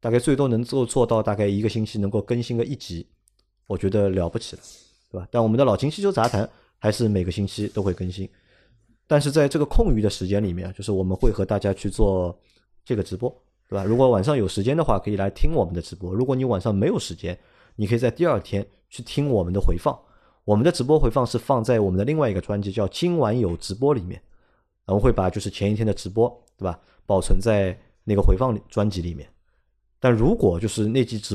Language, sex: Chinese, male